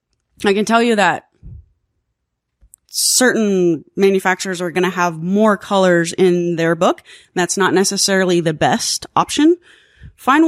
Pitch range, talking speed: 175-230 Hz, 130 wpm